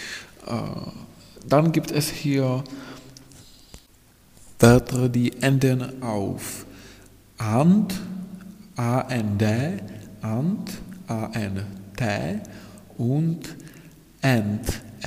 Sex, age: male, 50-69